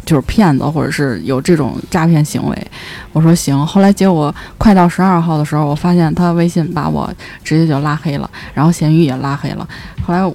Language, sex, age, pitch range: Chinese, female, 20-39, 165-220 Hz